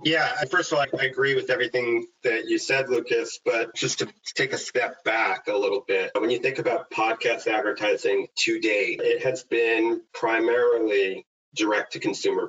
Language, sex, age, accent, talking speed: English, male, 30-49, American, 185 wpm